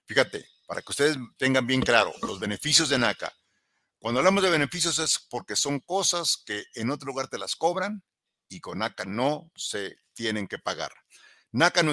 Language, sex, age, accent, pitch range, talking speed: Spanish, male, 50-69, Mexican, 120-155 Hz, 180 wpm